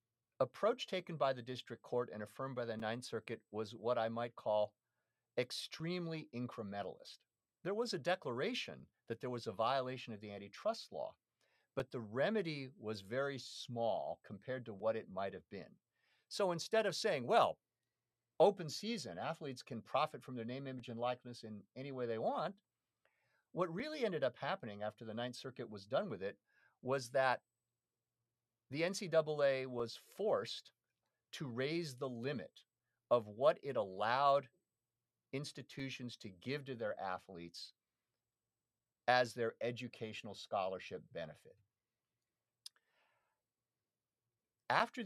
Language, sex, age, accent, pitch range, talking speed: English, male, 50-69, American, 115-140 Hz, 140 wpm